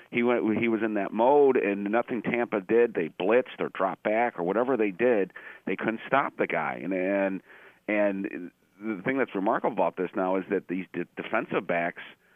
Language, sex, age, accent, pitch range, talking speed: English, male, 40-59, American, 90-115 Hz, 180 wpm